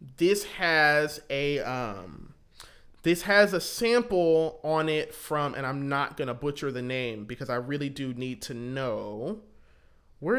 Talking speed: 155 wpm